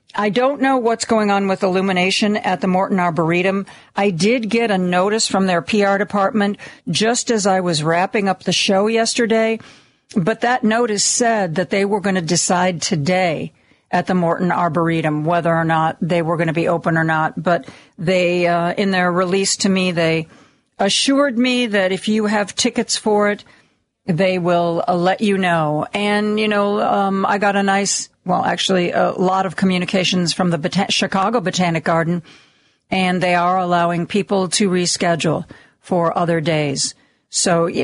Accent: American